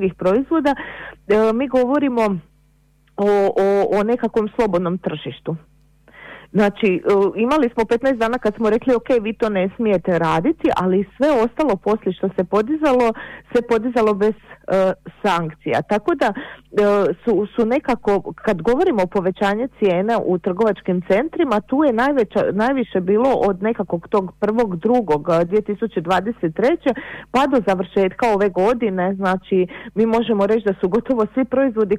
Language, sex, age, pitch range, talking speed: Croatian, female, 40-59, 190-240 Hz, 135 wpm